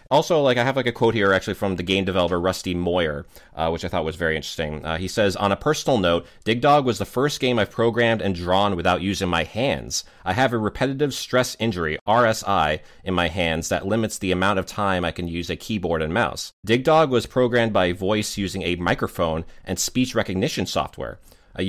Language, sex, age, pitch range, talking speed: English, male, 30-49, 90-120 Hz, 220 wpm